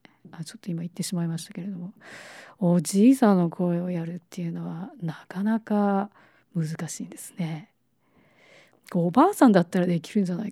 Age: 40-59